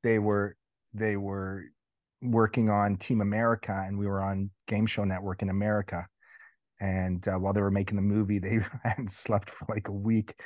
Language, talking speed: English, 185 wpm